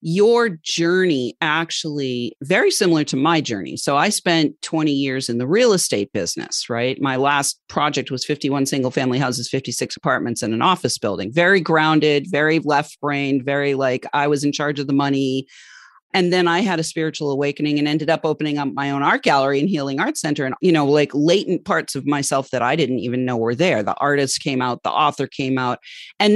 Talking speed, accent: 205 wpm, American